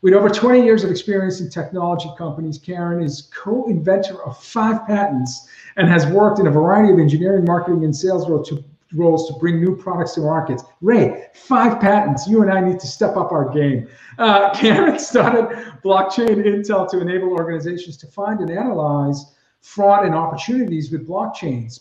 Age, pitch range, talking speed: 50-69, 155-200 Hz, 170 wpm